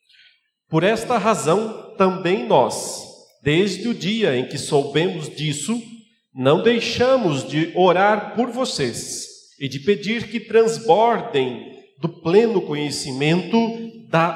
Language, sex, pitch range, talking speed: Portuguese, male, 155-225 Hz, 115 wpm